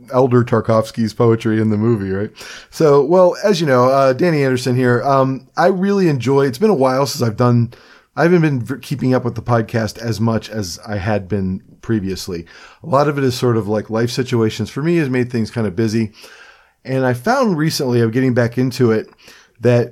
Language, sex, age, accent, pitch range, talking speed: English, male, 40-59, American, 110-135 Hz, 210 wpm